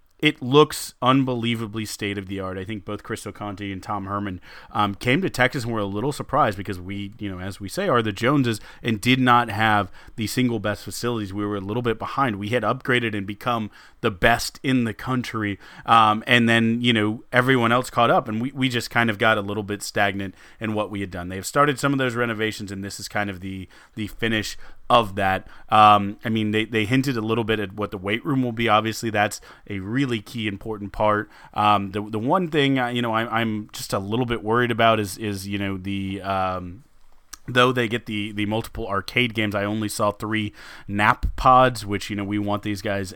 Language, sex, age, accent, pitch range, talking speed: English, male, 30-49, American, 100-120 Hz, 225 wpm